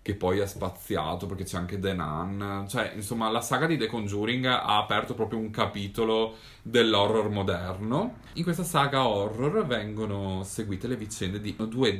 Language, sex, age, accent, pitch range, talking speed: Italian, male, 30-49, native, 95-125 Hz, 165 wpm